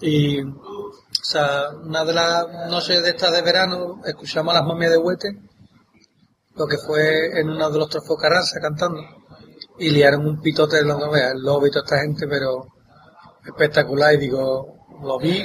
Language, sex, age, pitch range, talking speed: Spanish, male, 30-49, 155-175 Hz, 170 wpm